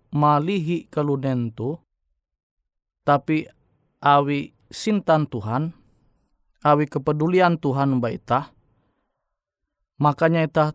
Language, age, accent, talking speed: Indonesian, 20-39, native, 80 wpm